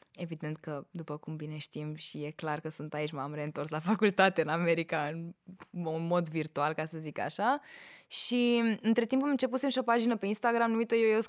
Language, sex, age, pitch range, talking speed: Romanian, female, 20-39, 160-235 Hz, 200 wpm